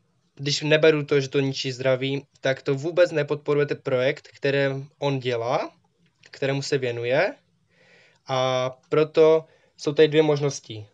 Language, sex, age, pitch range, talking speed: Czech, male, 20-39, 130-155 Hz, 130 wpm